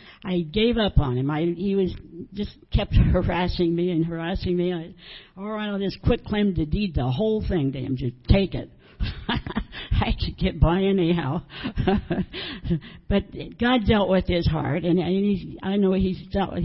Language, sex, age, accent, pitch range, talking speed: English, female, 60-79, American, 165-200 Hz, 180 wpm